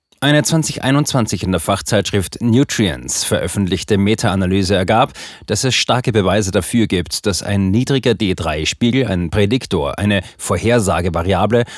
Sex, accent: male, German